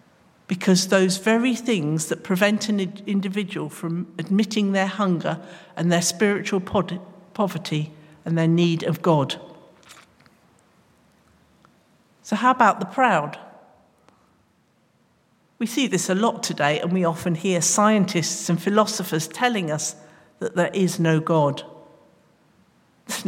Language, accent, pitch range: English, British, 160-200 Hz